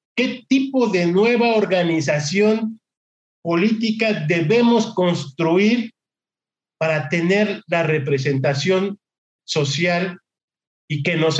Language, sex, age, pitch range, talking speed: English, male, 50-69, 160-215 Hz, 85 wpm